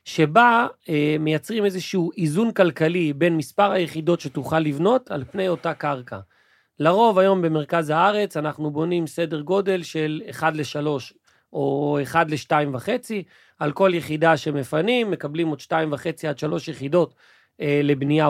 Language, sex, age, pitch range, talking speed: Hebrew, male, 40-59, 145-190 Hz, 135 wpm